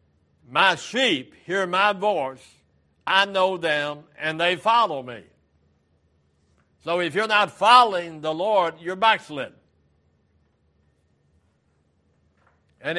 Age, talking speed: 60-79, 100 wpm